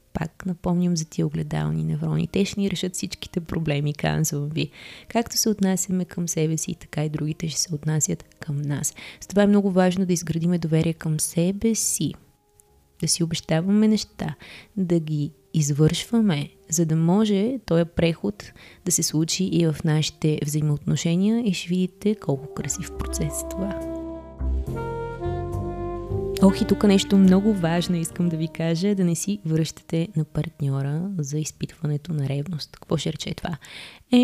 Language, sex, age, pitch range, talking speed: Bulgarian, female, 20-39, 150-185 Hz, 160 wpm